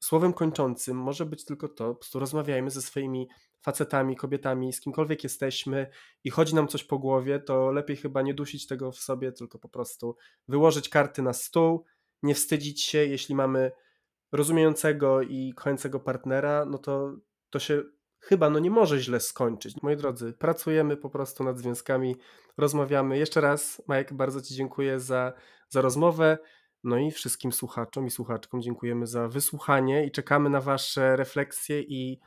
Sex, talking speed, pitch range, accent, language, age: male, 165 wpm, 130-145 Hz, native, Polish, 20-39